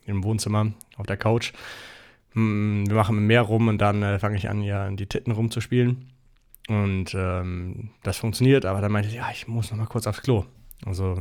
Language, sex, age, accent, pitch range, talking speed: German, male, 20-39, German, 105-125 Hz, 210 wpm